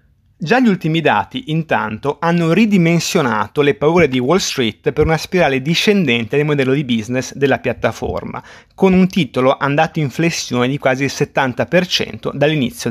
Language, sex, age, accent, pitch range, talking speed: Italian, male, 30-49, native, 135-180 Hz, 155 wpm